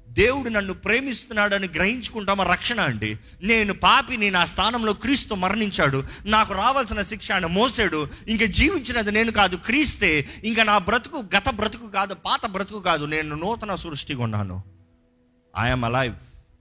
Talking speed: 135 wpm